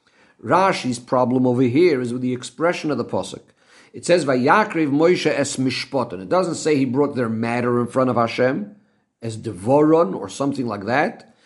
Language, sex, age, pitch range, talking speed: English, male, 50-69, 130-175 Hz, 170 wpm